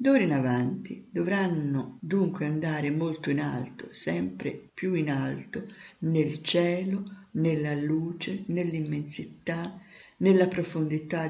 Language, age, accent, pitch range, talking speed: Italian, 50-69, native, 150-195 Hz, 105 wpm